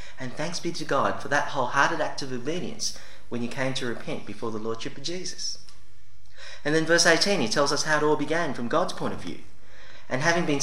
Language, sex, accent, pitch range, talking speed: English, male, Australian, 105-170 Hz, 225 wpm